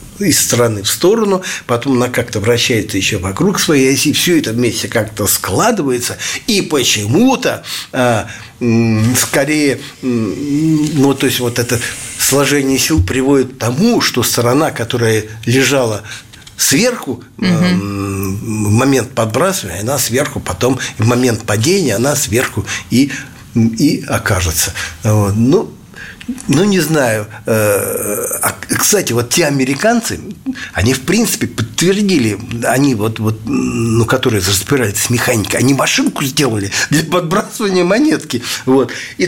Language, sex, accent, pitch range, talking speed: Russian, male, native, 115-160 Hz, 120 wpm